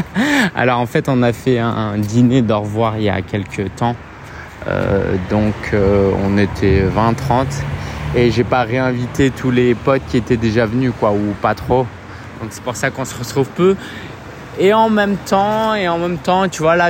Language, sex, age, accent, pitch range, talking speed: French, male, 20-39, French, 125-165 Hz, 195 wpm